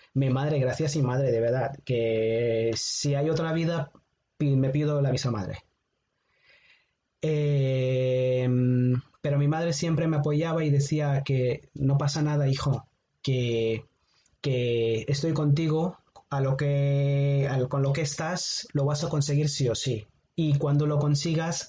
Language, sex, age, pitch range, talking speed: Spanish, male, 30-49, 130-150 Hz, 140 wpm